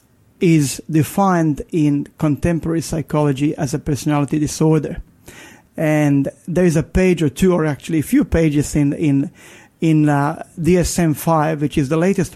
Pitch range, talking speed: 150-175 Hz, 140 wpm